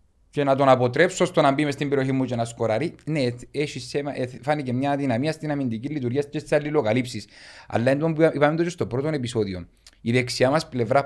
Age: 30-49